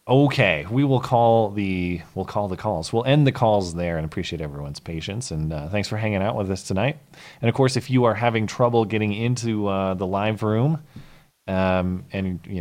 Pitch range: 90-125 Hz